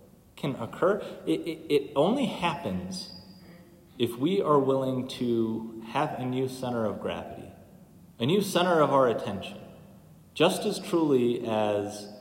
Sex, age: male, 30-49